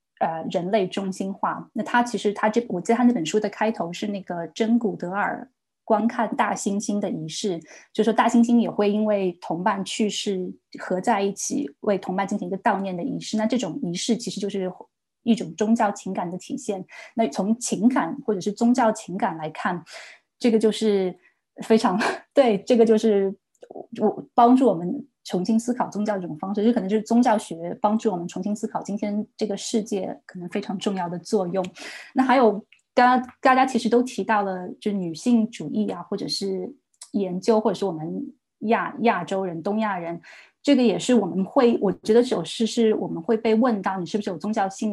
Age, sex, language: 20-39, female, Chinese